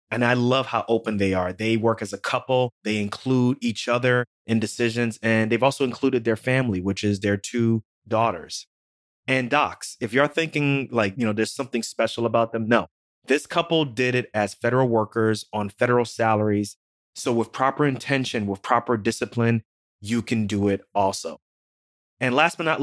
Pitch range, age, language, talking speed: 105-125 Hz, 30-49, English, 180 wpm